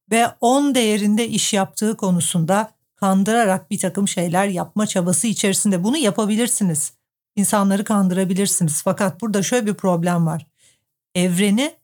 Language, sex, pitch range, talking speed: Turkish, female, 185-230 Hz, 120 wpm